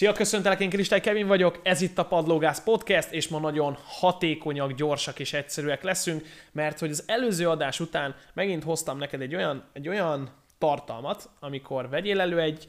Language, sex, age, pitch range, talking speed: Hungarian, male, 20-39, 125-160 Hz, 175 wpm